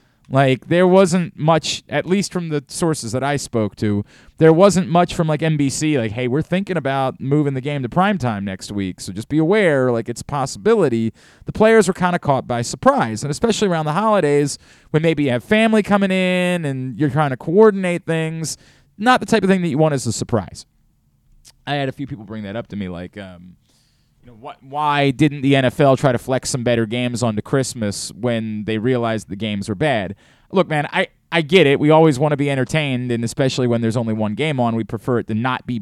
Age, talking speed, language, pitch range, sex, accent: 30-49, 225 wpm, English, 115-175 Hz, male, American